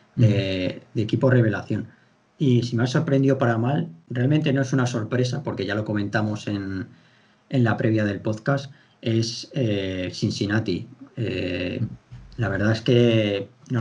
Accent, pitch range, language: Spanish, 105-125 Hz, Spanish